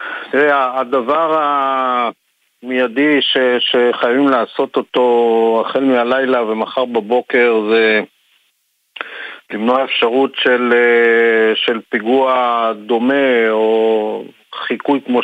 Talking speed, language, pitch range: 85 wpm, Hebrew, 115-130 Hz